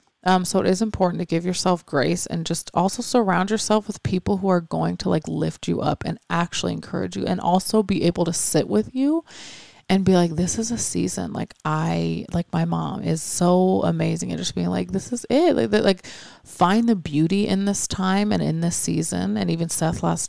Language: English